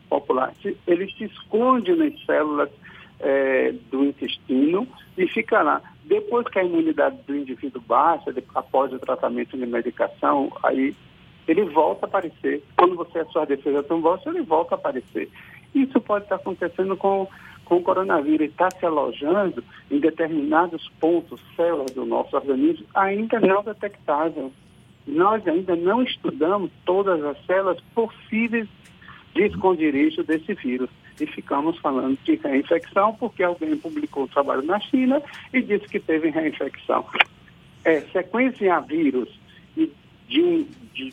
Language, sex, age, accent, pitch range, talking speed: Portuguese, male, 60-79, Brazilian, 150-235 Hz, 145 wpm